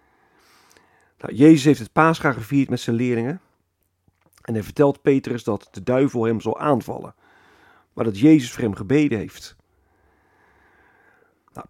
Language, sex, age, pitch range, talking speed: Dutch, male, 40-59, 120-170 Hz, 140 wpm